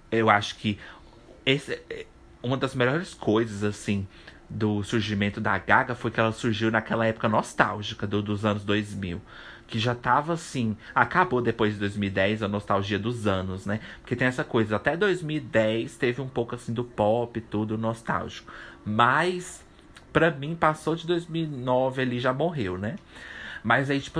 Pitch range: 105-130 Hz